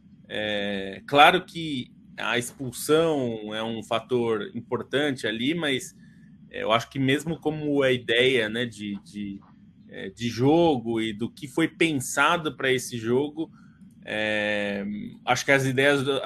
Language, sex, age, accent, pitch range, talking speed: Portuguese, male, 20-39, Brazilian, 125-175 Hz, 135 wpm